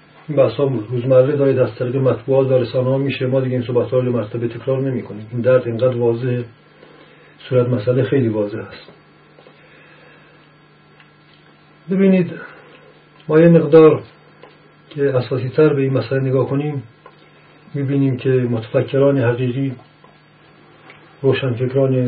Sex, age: male, 40-59